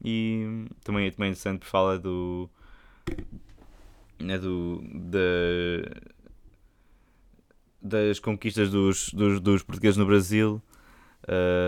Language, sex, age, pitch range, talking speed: Portuguese, male, 20-39, 85-110 Hz, 100 wpm